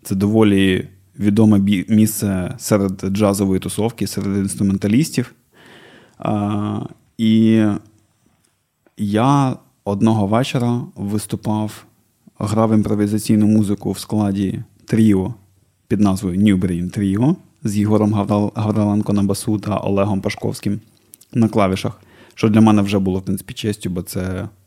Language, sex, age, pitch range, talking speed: Ukrainian, male, 20-39, 100-110 Hz, 110 wpm